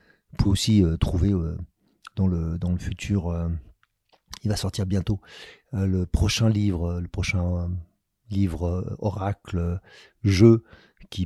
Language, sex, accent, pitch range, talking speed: French, male, French, 90-110 Hz, 160 wpm